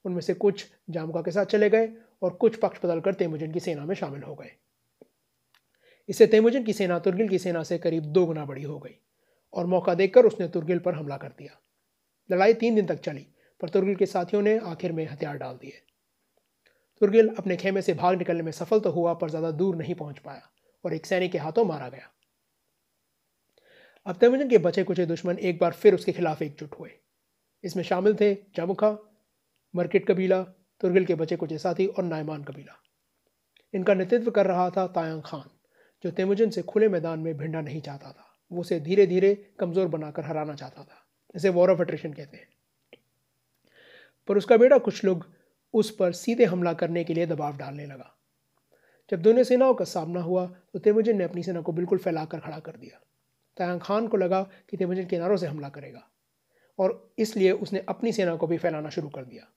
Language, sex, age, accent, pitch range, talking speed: Hindi, male, 30-49, native, 165-200 Hz, 190 wpm